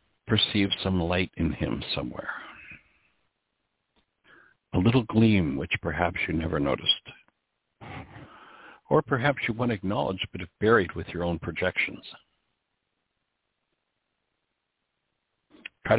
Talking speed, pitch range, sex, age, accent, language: 100 wpm, 85-105 Hz, male, 60-79, American, English